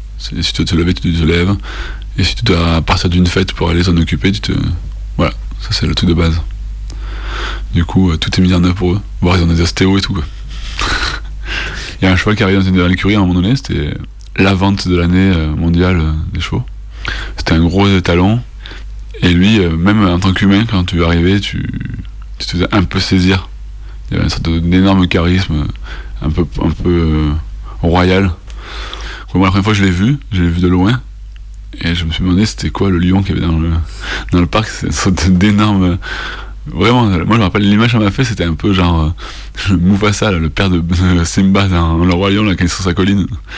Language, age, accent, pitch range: French, 20-39, French, 85-100 Hz